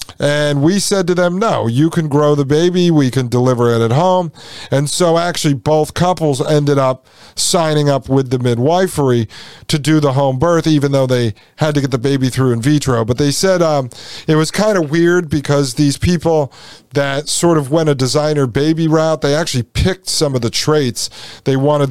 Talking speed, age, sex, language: 205 wpm, 40-59, male, English